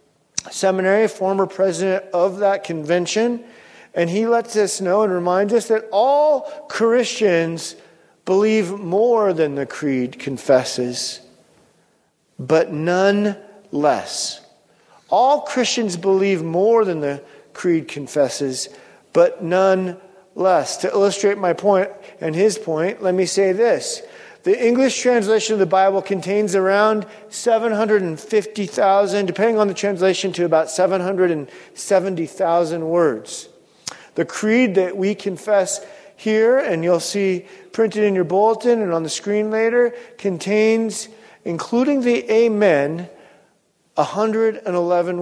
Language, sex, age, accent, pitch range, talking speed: English, male, 40-59, American, 180-220 Hz, 115 wpm